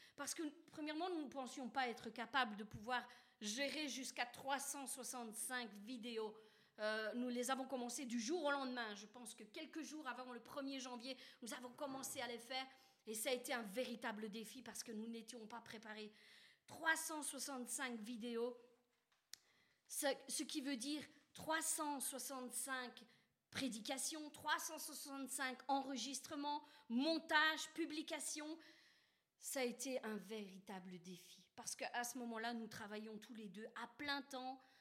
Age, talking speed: 40-59, 145 wpm